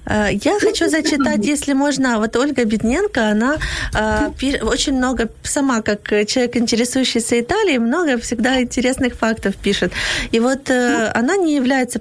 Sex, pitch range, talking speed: female, 215-260 Hz, 130 wpm